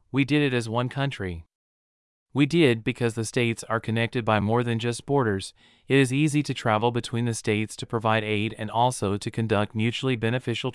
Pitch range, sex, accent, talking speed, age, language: 110-130 Hz, male, American, 195 wpm, 30-49, English